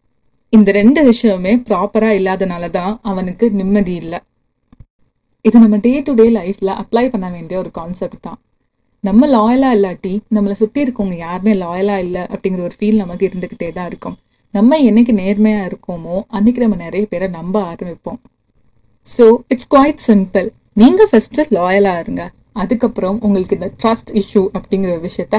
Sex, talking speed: female, 145 wpm